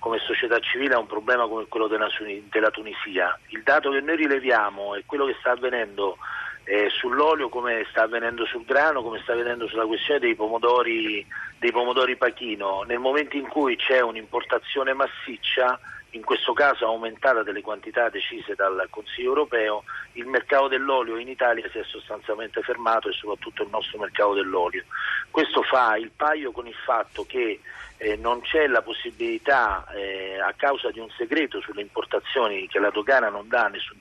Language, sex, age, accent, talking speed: Italian, male, 40-59, native, 170 wpm